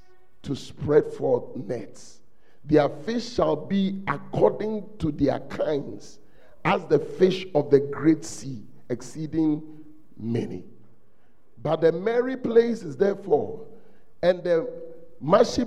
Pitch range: 125-195 Hz